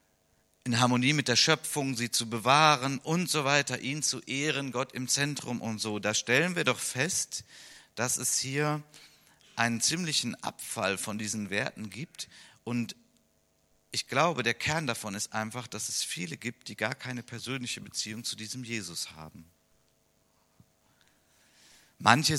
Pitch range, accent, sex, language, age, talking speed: 95-130 Hz, German, male, German, 50-69, 150 wpm